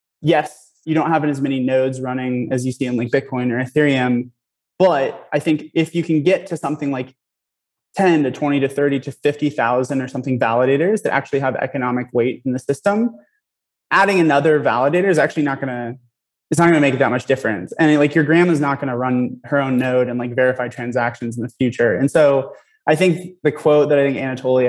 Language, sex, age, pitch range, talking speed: English, male, 20-39, 125-150 Hz, 215 wpm